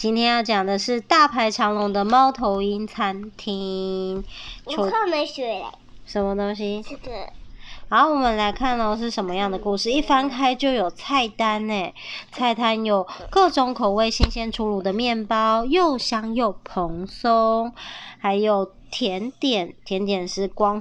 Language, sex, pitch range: Chinese, male, 195-260 Hz